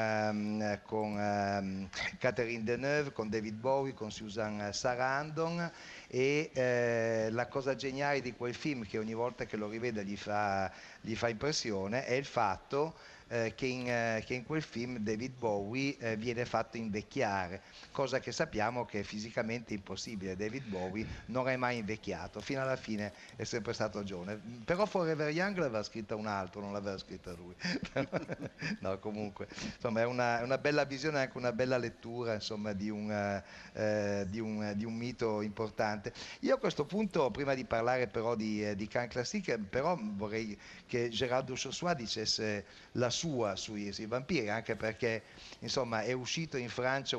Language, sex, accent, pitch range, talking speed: French, male, Italian, 105-130 Hz, 165 wpm